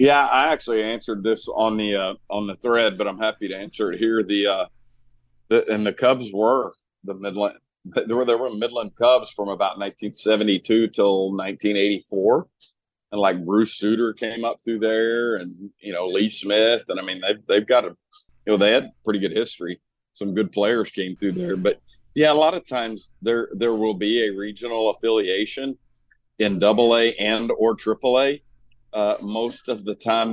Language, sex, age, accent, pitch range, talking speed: English, male, 40-59, American, 100-115 Hz, 185 wpm